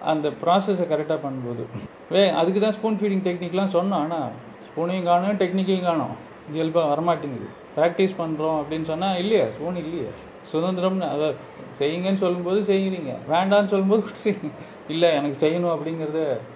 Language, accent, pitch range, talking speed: Tamil, native, 150-205 Hz, 130 wpm